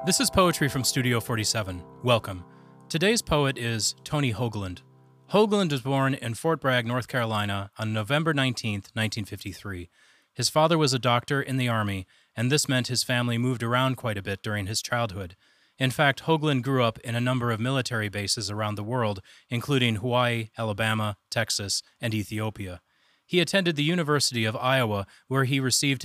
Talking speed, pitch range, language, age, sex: 170 wpm, 110-140 Hz, English, 30-49, male